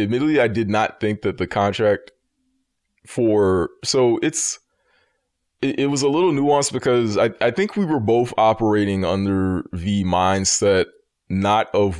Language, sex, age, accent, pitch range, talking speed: English, male, 20-39, American, 100-130 Hz, 150 wpm